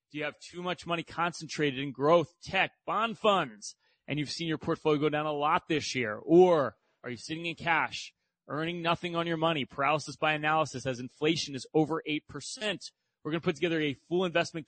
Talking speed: 205 wpm